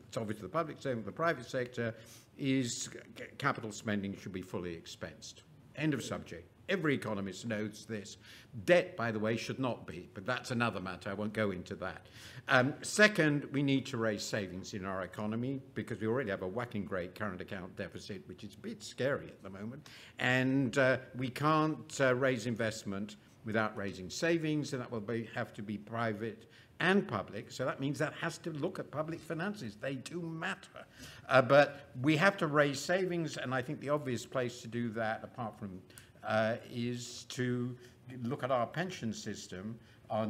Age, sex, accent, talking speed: 60-79, male, British, 185 wpm